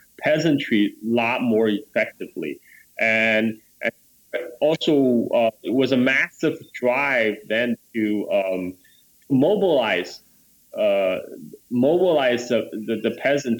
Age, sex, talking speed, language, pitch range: 20-39, male, 105 wpm, English, 115-160 Hz